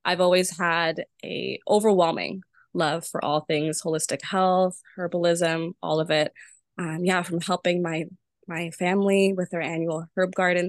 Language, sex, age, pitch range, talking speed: English, female, 20-39, 165-200 Hz, 150 wpm